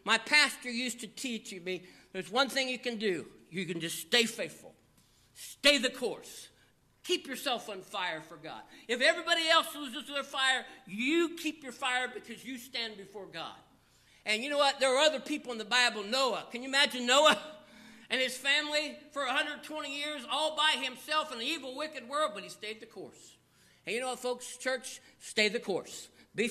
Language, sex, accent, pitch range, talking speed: English, male, American, 210-260 Hz, 195 wpm